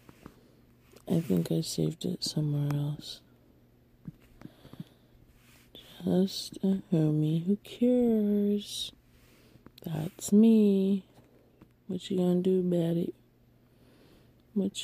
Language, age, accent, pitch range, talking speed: English, 20-39, American, 155-195 Hz, 85 wpm